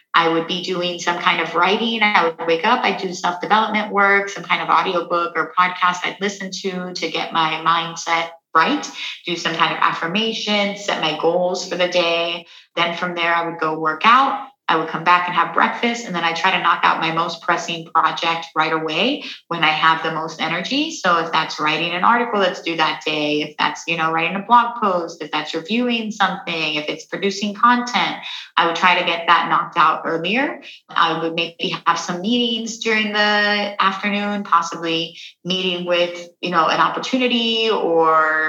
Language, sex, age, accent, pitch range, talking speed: English, female, 30-49, American, 165-200 Hz, 200 wpm